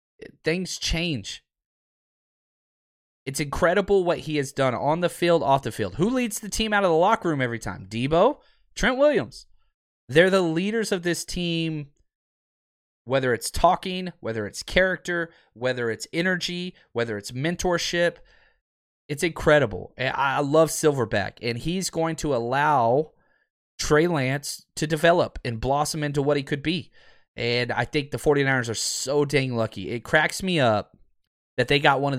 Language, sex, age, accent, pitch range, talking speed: English, male, 30-49, American, 110-160 Hz, 160 wpm